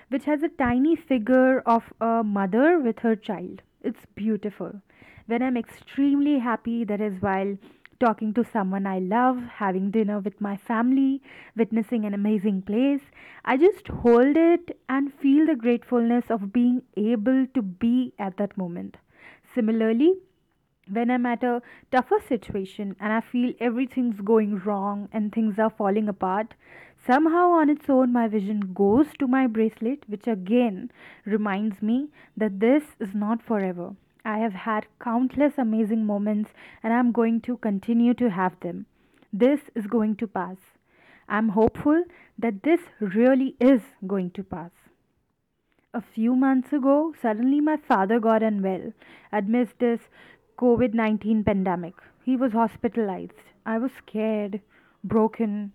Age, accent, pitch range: 20-39, Indian, 210-255 Hz